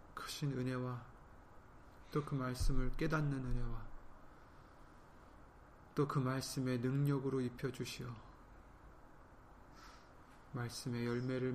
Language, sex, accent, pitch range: Korean, male, native, 120-140 Hz